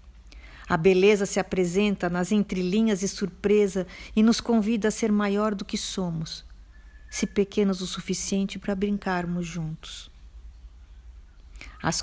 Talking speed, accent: 125 wpm, Brazilian